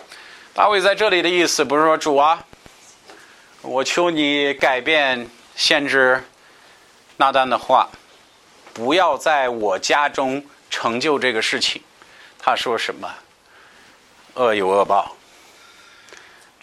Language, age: Chinese, 50-69